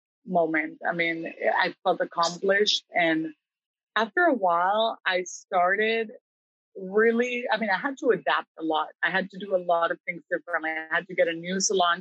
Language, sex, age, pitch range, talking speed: English, female, 30-49, 175-225 Hz, 185 wpm